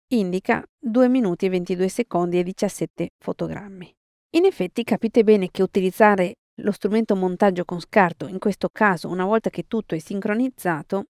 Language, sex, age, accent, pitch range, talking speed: Italian, female, 40-59, native, 180-225 Hz, 155 wpm